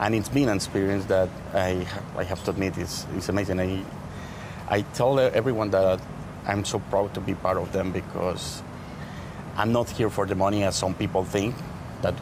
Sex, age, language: male, 30-49, English